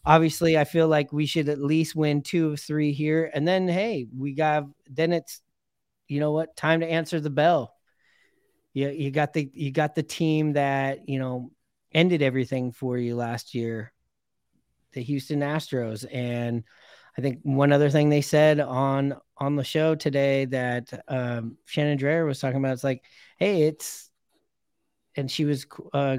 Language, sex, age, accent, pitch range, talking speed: English, male, 30-49, American, 130-155 Hz, 175 wpm